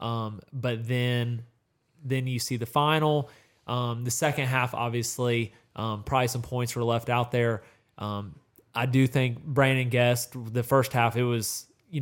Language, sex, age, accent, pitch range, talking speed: English, male, 20-39, American, 115-130 Hz, 165 wpm